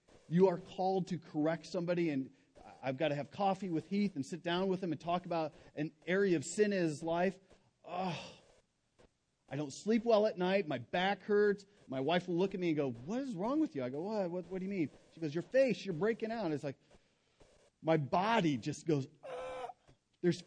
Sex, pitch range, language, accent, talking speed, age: male, 150-195 Hz, English, American, 215 wpm, 40-59